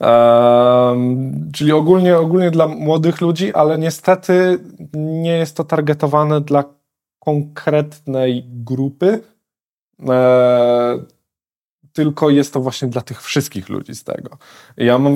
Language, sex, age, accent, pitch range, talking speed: Polish, male, 20-39, native, 130-165 Hz, 120 wpm